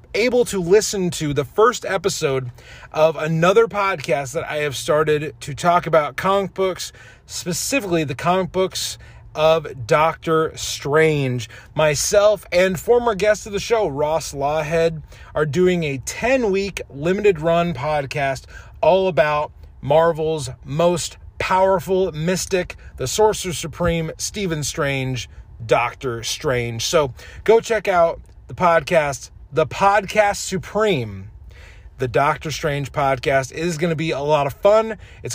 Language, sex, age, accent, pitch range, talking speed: English, male, 30-49, American, 140-190 Hz, 130 wpm